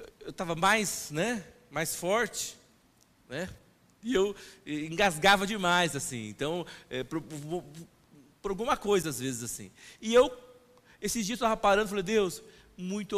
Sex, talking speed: male, 130 wpm